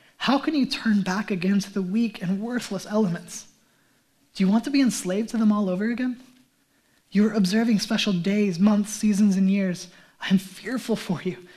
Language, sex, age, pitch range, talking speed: English, male, 20-39, 185-220 Hz, 190 wpm